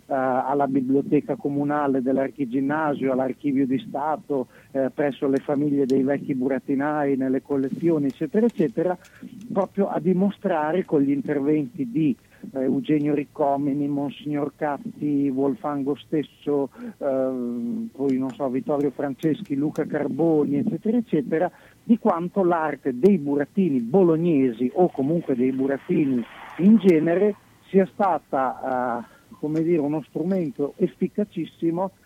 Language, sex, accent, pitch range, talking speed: Italian, male, native, 140-175 Hz, 115 wpm